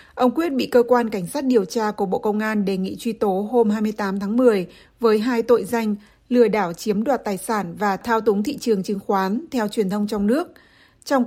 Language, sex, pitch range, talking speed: Vietnamese, female, 205-240 Hz, 235 wpm